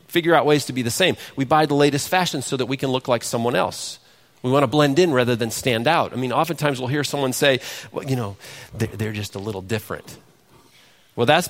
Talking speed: 240 wpm